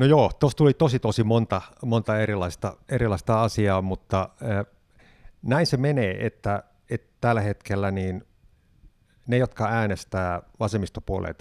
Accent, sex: native, male